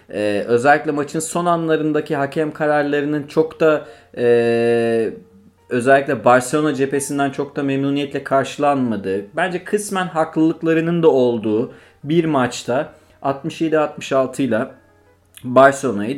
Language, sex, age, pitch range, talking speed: Turkish, male, 30-49, 120-160 Hz, 100 wpm